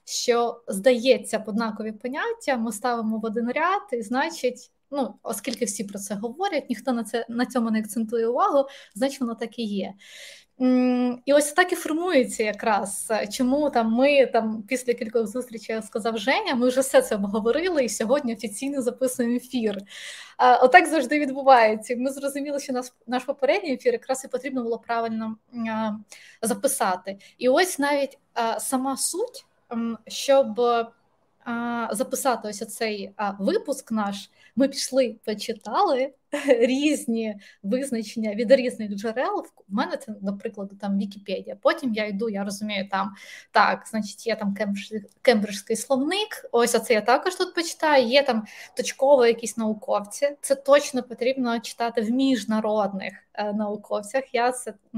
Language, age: Ukrainian, 20-39